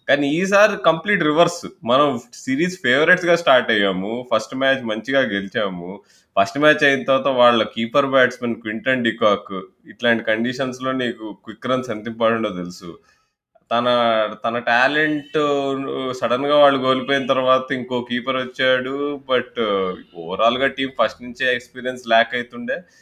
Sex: male